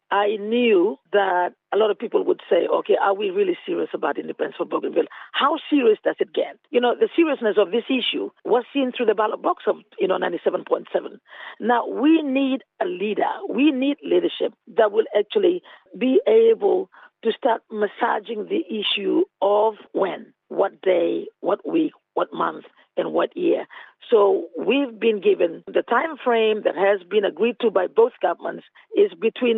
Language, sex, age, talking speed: English, female, 50-69, 175 wpm